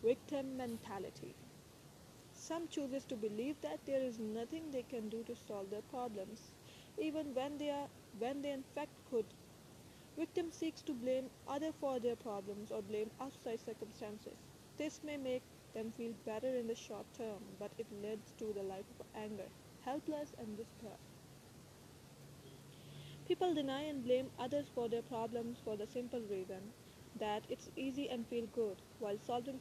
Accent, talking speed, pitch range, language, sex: Indian, 160 wpm, 215-265 Hz, English, female